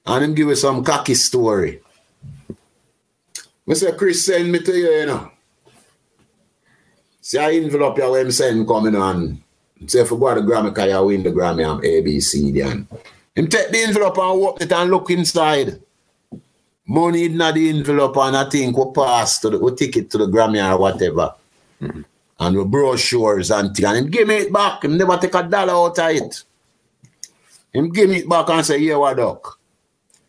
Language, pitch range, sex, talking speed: English, 115-160 Hz, male, 205 wpm